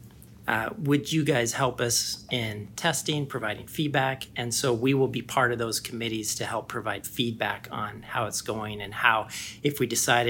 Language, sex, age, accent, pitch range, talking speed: English, male, 40-59, American, 110-125 Hz, 185 wpm